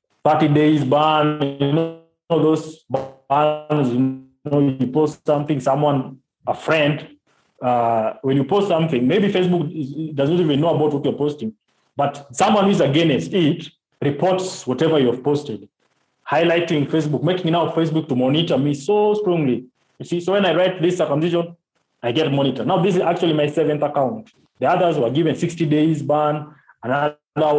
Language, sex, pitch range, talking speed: English, male, 135-165 Hz, 165 wpm